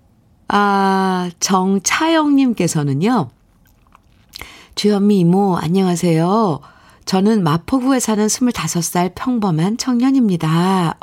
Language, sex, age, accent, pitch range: Korean, female, 50-69, native, 160-225 Hz